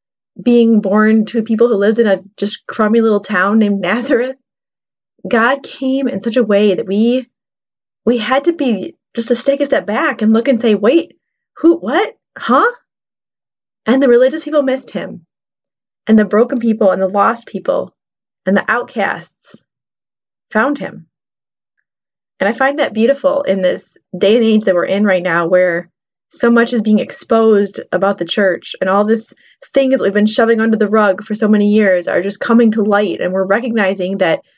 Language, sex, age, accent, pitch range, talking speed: English, female, 20-39, American, 200-240 Hz, 185 wpm